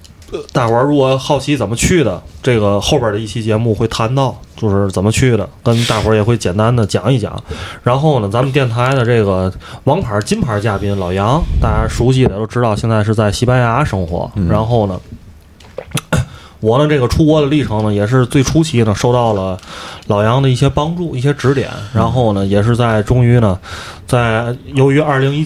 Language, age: Chinese, 20-39